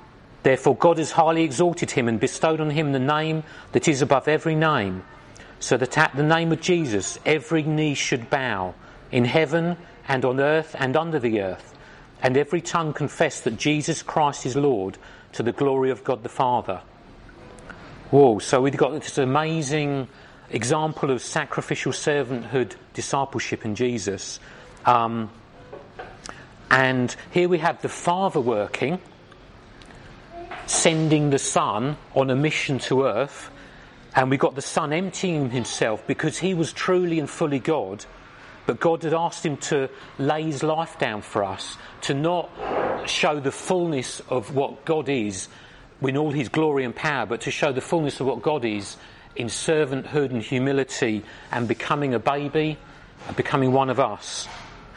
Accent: British